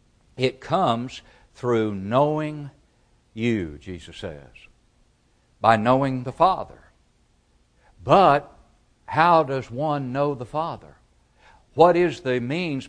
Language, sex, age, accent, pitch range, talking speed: English, male, 60-79, American, 115-150 Hz, 100 wpm